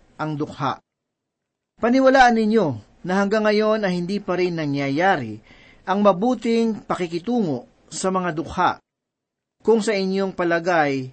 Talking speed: 120 wpm